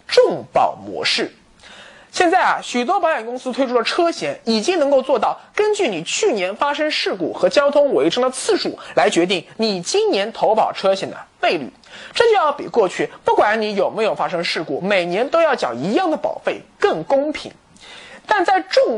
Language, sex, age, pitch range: Chinese, male, 20-39, 255-395 Hz